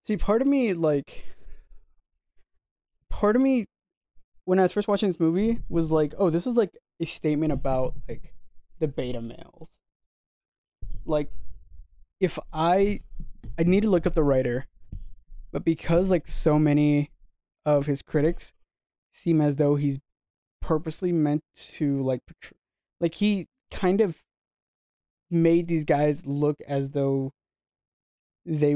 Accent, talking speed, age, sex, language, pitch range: American, 135 wpm, 20-39, male, English, 135-175 Hz